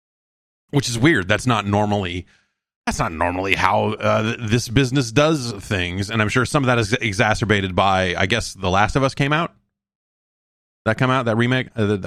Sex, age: male, 30-49